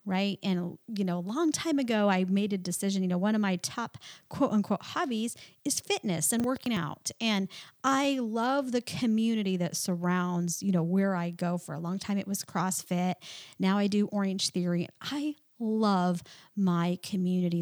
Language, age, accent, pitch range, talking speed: English, 40-59, American, 180-250 Hz, 185 wpm